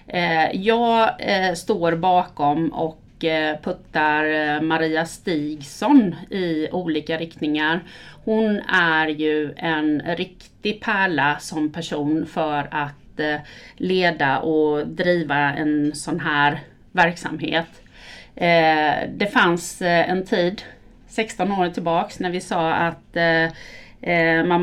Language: Swedish